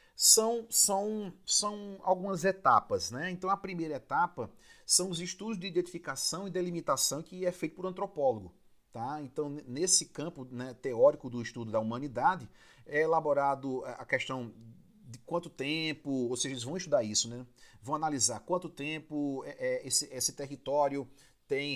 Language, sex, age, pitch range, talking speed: Portuguese, male, 40-59, 125-160 Hz, 155 wpm